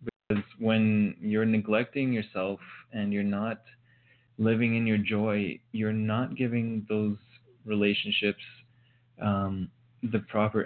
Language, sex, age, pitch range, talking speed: English, male, 20-39, 105-120 Hz, 105 wpm